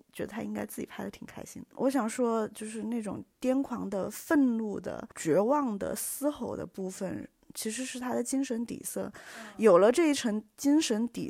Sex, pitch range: female, 200-260 Hz